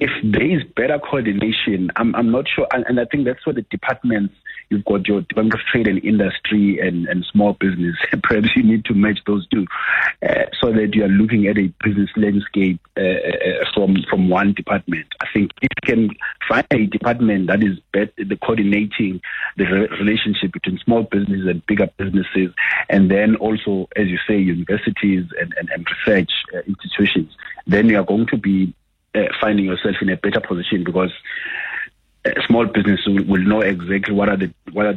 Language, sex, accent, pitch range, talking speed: English, male, South African, 95-105 Hz, 190 wpm